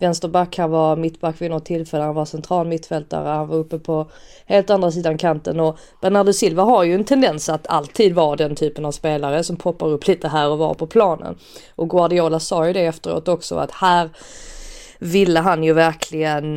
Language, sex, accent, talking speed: Swedish, female, native, 195 wpm